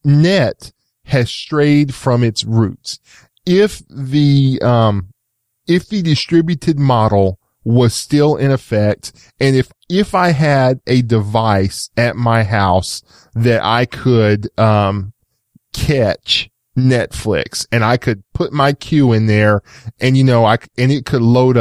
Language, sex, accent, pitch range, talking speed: English, male, American, 110-135 Hz, 135 wpm